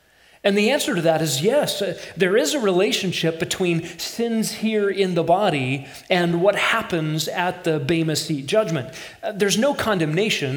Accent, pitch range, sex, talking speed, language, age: American, 160-205 Hz, male, 160 wpm, English, 40-59